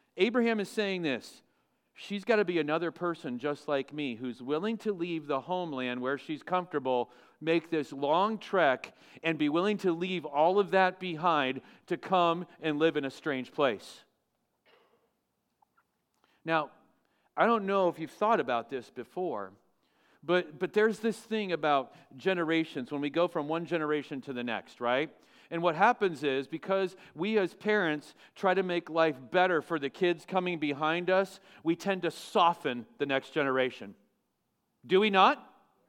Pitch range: 145-200 Hz